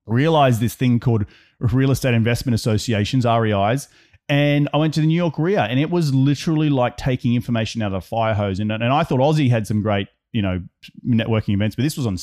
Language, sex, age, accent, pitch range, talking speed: English, male, 30-49, Australian, 110-150 Hz, 220 wpm